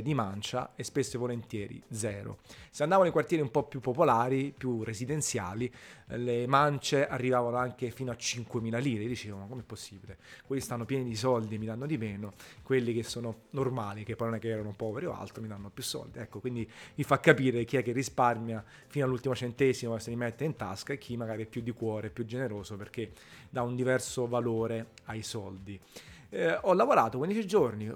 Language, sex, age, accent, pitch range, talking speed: Italian, male, 30-49, native, 115-135 Hz, 200 wpm